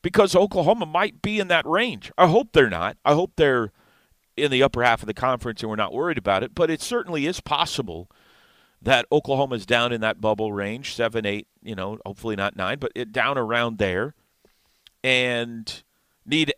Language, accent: English, American